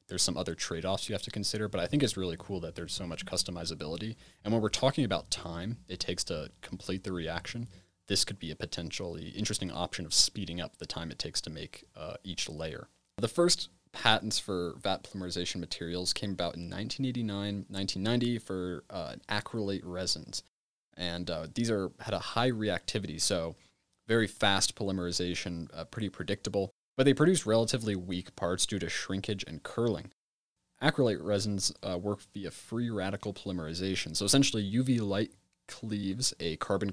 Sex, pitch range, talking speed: male, 90-110 Hz, 175 wpm